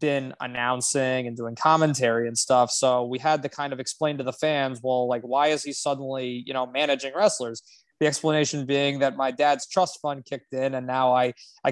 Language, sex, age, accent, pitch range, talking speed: English, male, 20-39, American, 130-165 Hz, 210 wpm